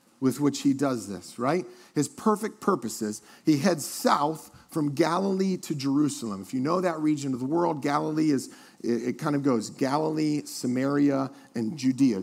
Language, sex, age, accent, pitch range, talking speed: English, male, 40-59, American, 130-180 Hz, 165 wpm